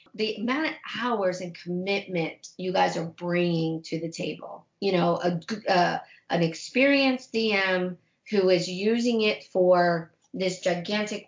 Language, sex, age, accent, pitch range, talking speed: English, female, 40-59, American, 180-235 Hz, 145 wpm